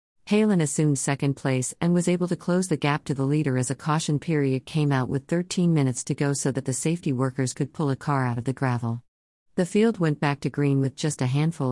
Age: 50-69